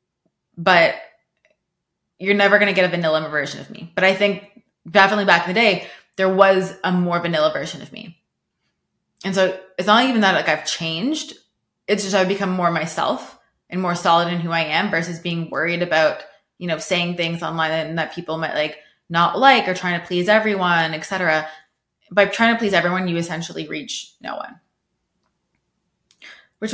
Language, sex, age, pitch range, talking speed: English, female, 20-39, 170-195 Hz, 185 wpm